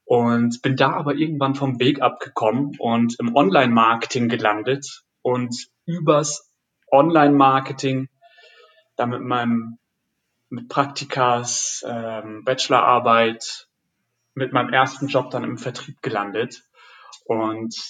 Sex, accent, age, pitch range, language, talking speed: male, German, 30-49, 120-145 Hz, German, 100 wpm